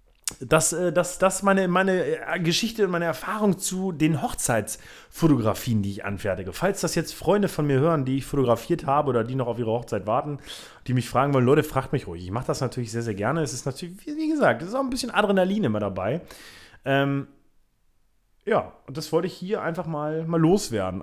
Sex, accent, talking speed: male, German, 210 wpm